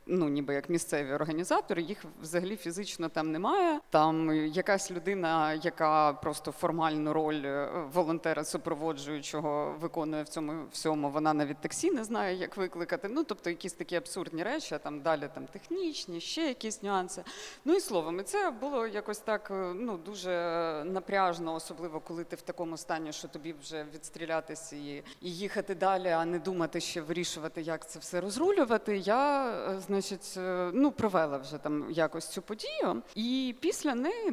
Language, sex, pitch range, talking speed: Ukrainian, female, 160-215 Hz, 155 wpm